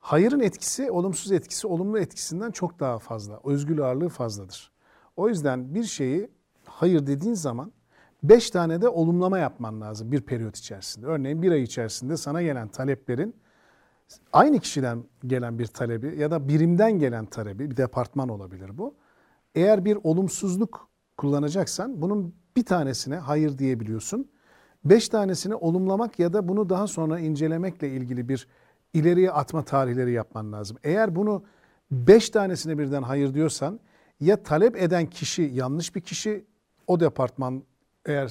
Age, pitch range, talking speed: 50-69, 130-180 Hz, 145 wpm